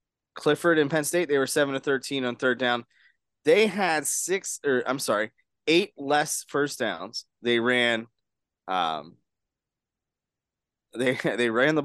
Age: 20-39